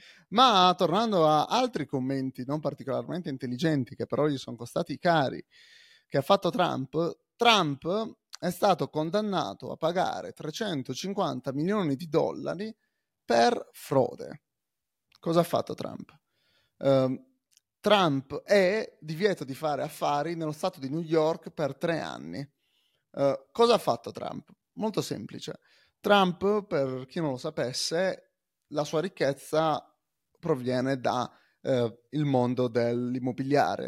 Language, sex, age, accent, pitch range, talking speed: Italian, male, 30-49, native, 135-185 Hz, 125 wpm